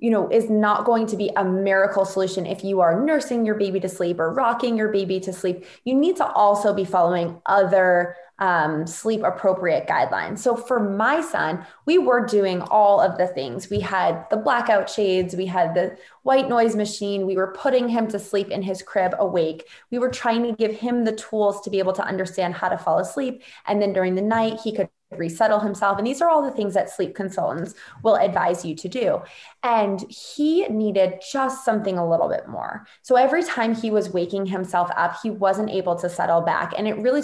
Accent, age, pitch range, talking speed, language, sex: American, 20-39, 190-235 Hz, 215 wpm, English, female